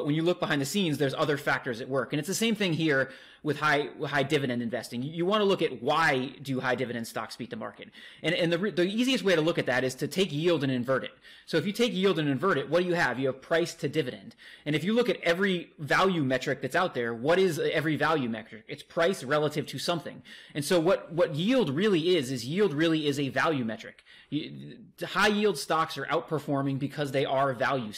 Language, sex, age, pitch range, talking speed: English, male, 20-39, 135-175 Hz, 240 wpm